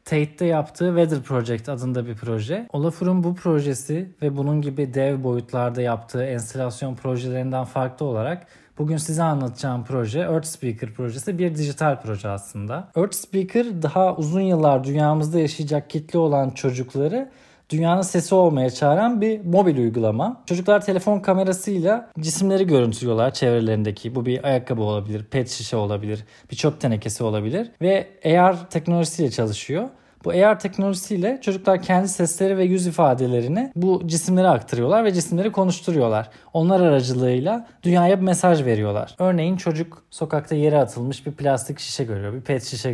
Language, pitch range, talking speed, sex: Turkish, 125-180 Hz, 145 wpm, male